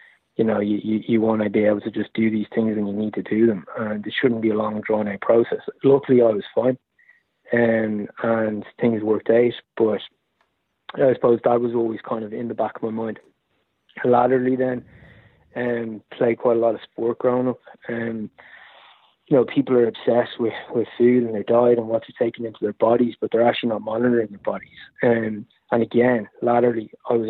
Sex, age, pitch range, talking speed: male, 20-39, 110-125 Hz, 215 wpm